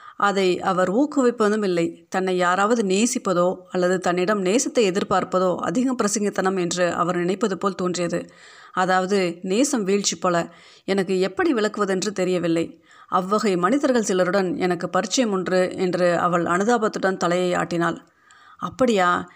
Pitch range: 180-215 Hz